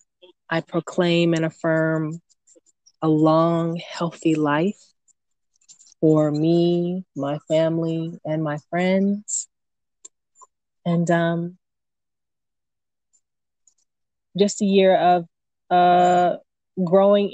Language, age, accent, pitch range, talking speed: English, 20-39, American, 160-185 Hz, 80 wpm